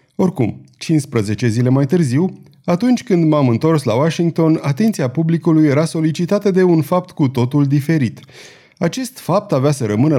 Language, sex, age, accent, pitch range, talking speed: Romanian, male, 30-49, native, 125-180 Hz, 155 wpm